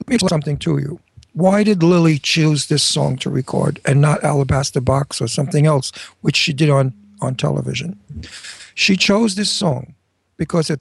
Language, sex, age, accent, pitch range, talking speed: English, male, 60-79, American, 140-175 Hz, 190 wpm